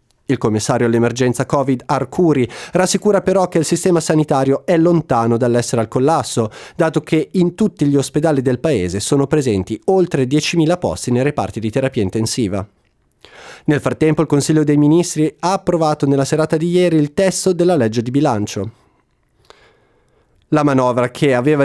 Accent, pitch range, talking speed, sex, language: native, 125-165 Hz, 155 wpm, male, Italian